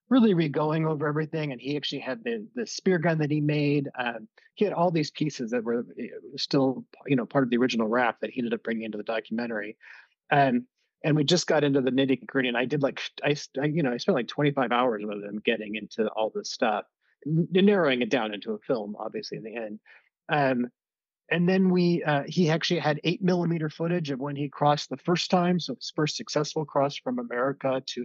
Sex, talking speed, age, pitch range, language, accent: male, 220 wpm, 30-49, 125-160 Hz, English, American